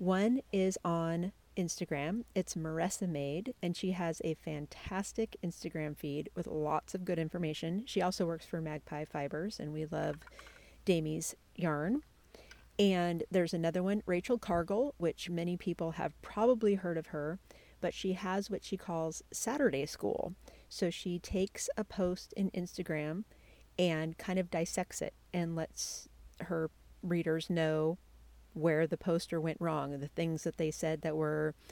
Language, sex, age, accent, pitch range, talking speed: English, female, 40-59, American, 155-185 Hz, 155 wpm